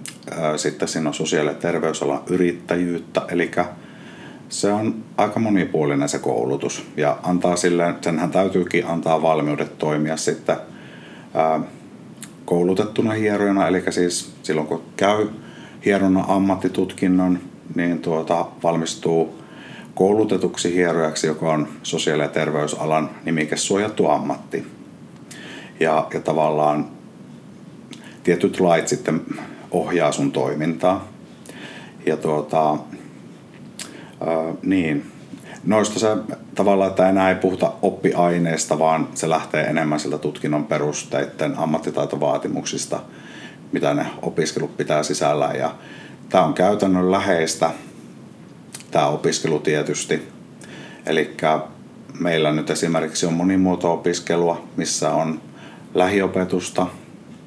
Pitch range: 80-95 Hz